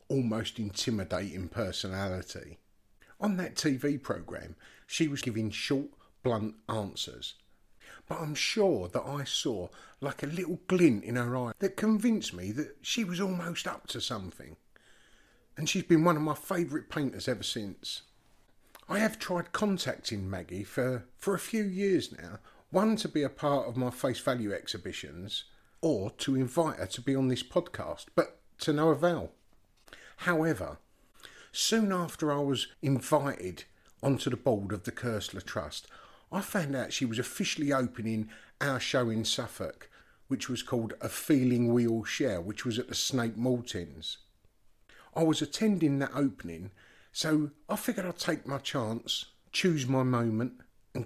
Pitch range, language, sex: 110-155 Hz, English, male